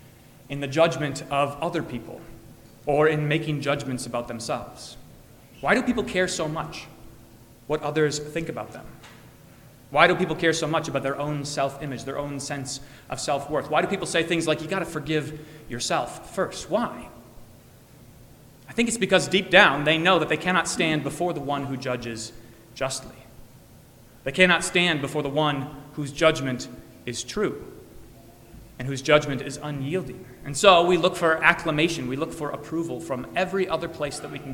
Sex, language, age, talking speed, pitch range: male, English, 30-49, 175 wpm, 135-165 Hz